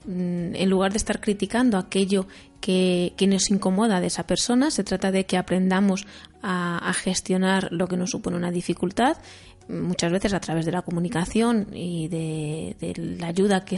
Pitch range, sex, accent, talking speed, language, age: 175-200 Hz, female, Spanish, 175 wpm, Spanish, 20-39